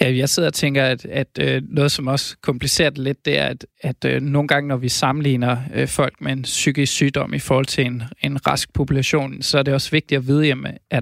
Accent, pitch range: native, 125-145 Hz